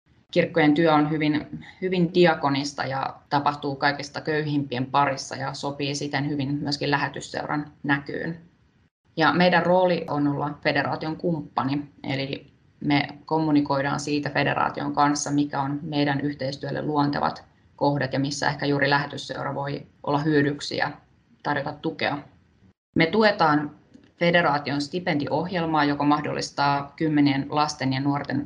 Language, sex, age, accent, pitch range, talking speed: Finnish, female, 20-39, native, 140-155 Hz, 120 wpm